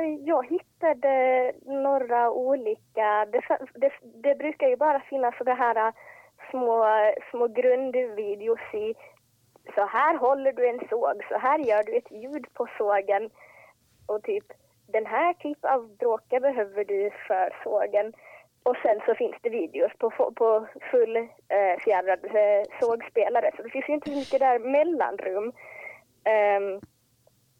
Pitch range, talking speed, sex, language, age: 205-295 Hz, 140 wpm, female, Swedish, 20-39